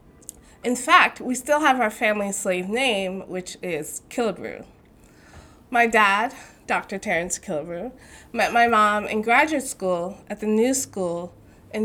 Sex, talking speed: female, 140 wpm